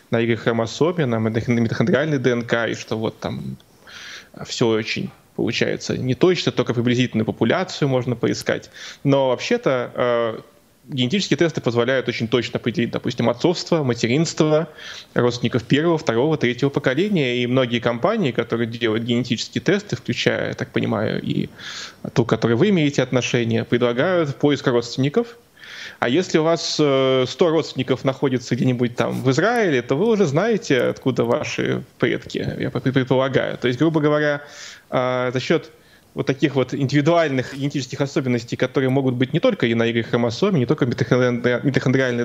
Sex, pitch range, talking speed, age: male, 120-145 Hz, 145 wpm, 20-39